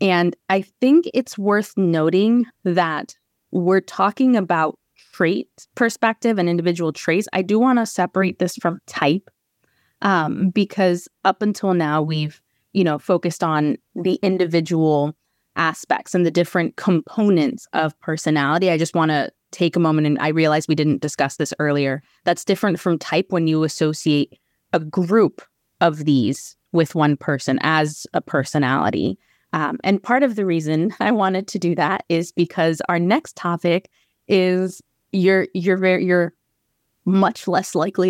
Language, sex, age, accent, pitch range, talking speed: English, female, 20-39, American, 155-190 Hz, 155 wpm